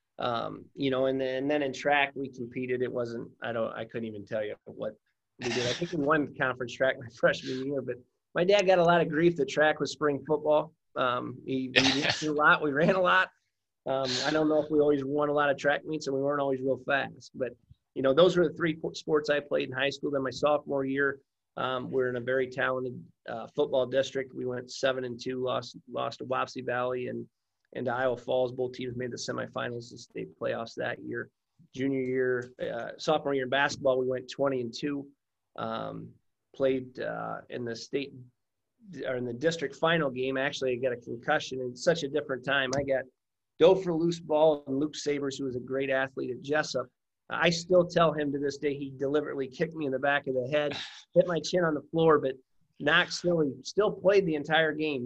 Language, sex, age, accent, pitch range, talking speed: English, male, 30-49, American, 130-150 Hz, 225 wpm